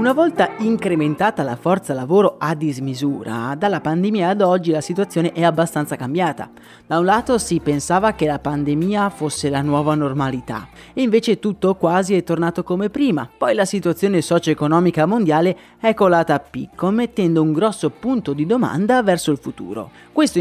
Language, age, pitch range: Italian, 30-49, 150-205 Hz